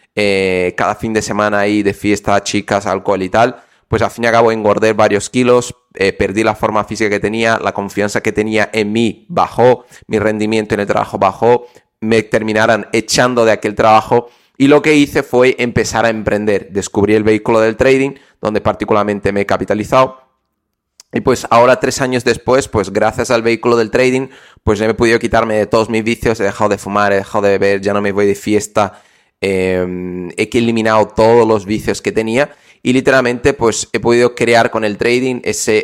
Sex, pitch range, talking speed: male, 105-120 Hz, 200 wpm